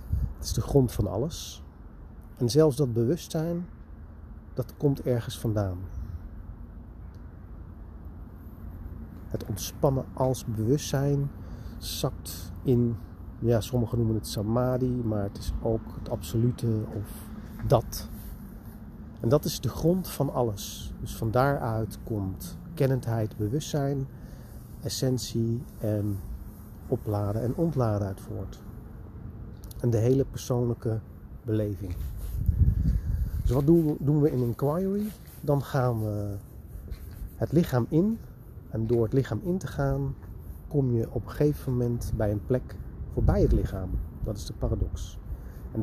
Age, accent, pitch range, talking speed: 40-59, Dutch, 95-130 Hz, 125 wpm